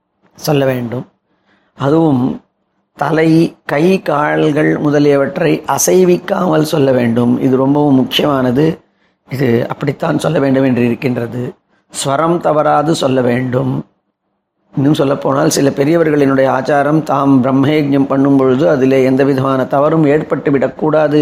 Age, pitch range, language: 30-49, 135-155 Hz, Tamil